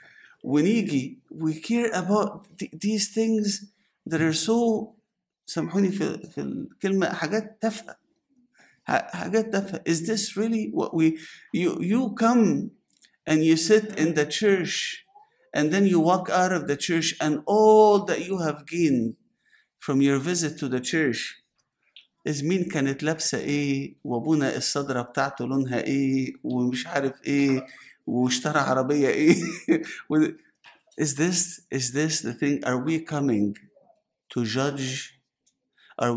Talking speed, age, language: 95 wpm, 50-69, English